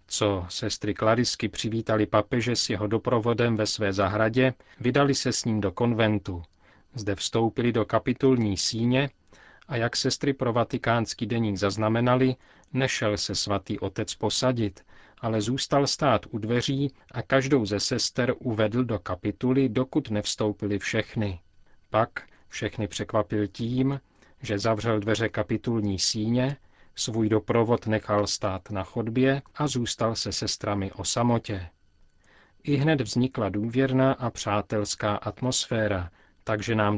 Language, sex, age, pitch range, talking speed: Czech, male, 40-59, 105-125 Hz, 125 wpm